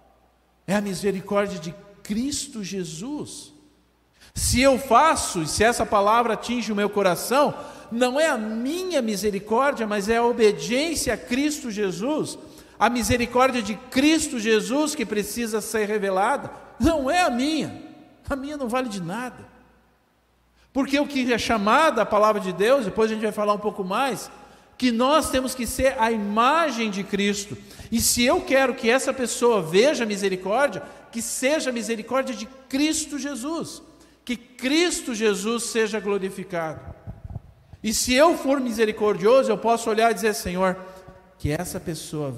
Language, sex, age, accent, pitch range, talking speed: Portuguese, male, 50-69, Brazilian, 185-265 Hz, 155 wpm